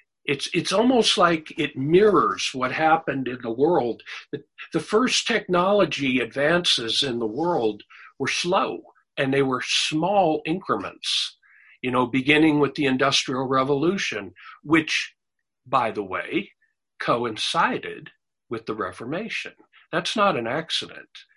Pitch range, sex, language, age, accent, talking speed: 135-195 Hz, male, English, 50-69, American, 125 wpm